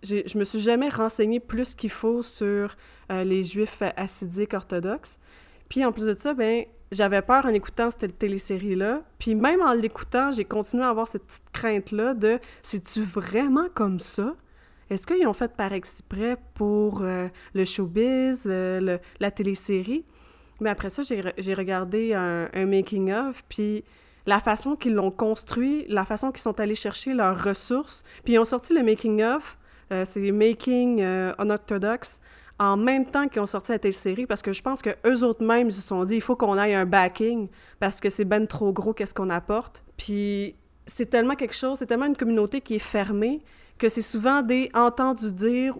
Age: 30-49